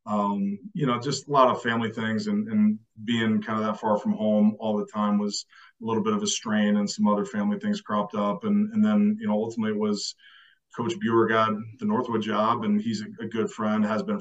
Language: English